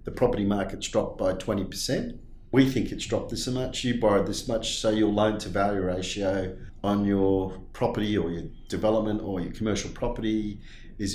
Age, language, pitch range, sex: 50-69, English, 100-125 Hz, male